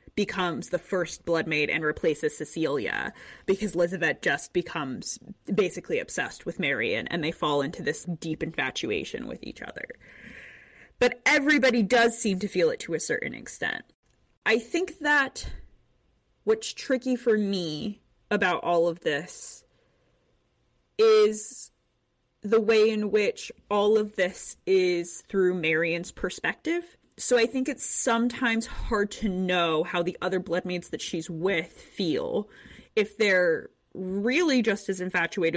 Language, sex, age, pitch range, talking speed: English, female, 20-39, 170-220 Hz, 140 wpm